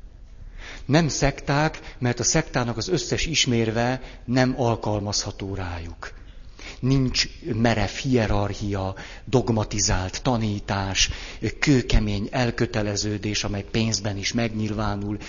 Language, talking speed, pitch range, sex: Hungarian, 85 wpm, 100-120 Hz, male